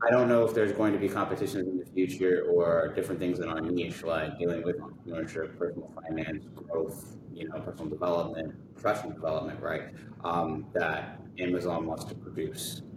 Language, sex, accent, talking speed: English, male, American, 175 wpm